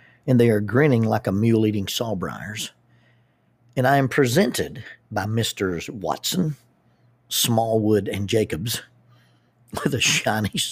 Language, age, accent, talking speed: English, 50-69, American, 120 wpm